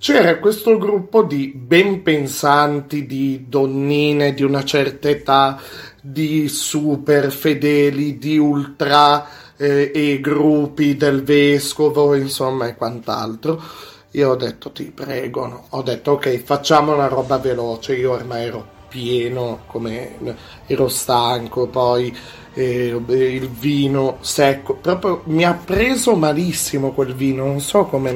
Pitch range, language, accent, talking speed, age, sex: 120-150 Hz, Italian, native, 125 wpm, 30-49, male